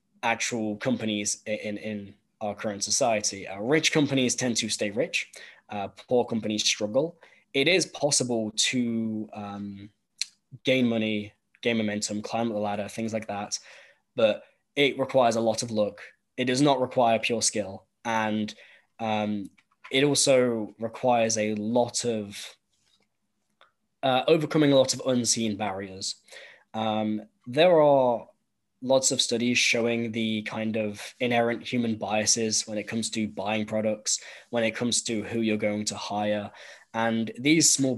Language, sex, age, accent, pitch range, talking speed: English, male, 10-29, British, 105-125 Hz, 145 wpm